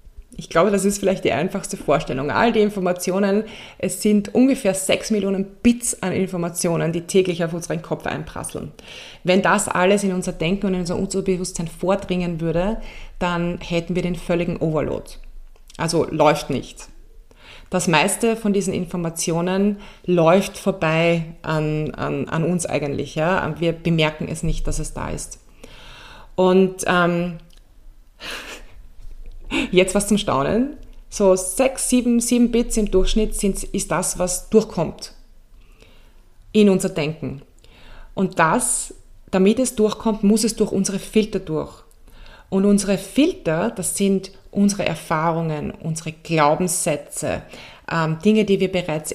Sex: female